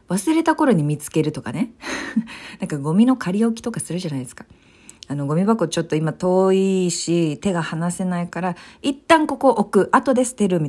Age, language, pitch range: 40-59, Japanese, 155-230 Hz